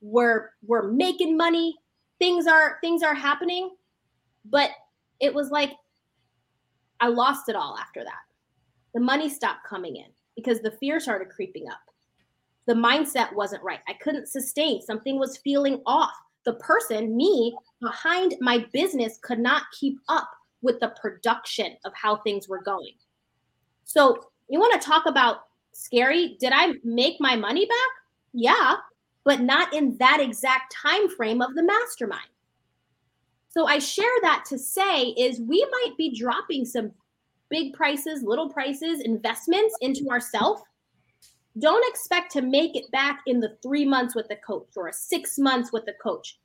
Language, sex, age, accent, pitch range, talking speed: English, female, 20-39, American, 240-320 Hz, 160 wpm